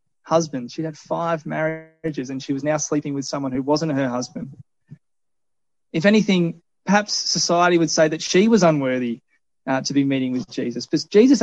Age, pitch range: 20-39, 140-175 Hz